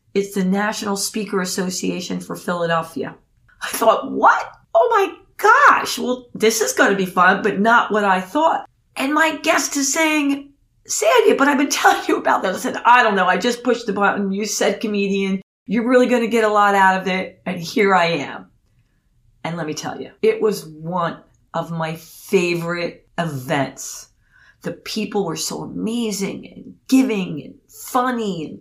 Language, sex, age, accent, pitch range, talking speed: English, female, 40-59, American, 175-245 Hz, 185 wpm